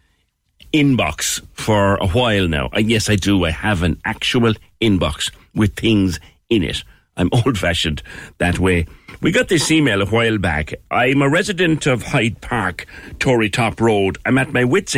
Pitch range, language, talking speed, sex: 90-125 Hz, English, 170 wpm, male